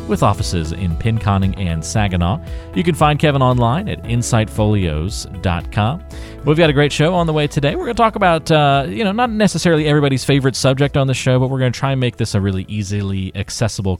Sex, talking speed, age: male, 215 wpm, 40-59